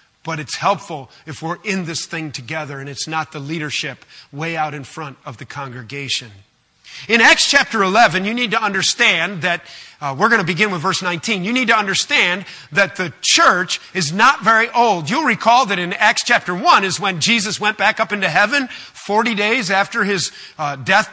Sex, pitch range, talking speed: male, 165-235 Hz, 200 wpm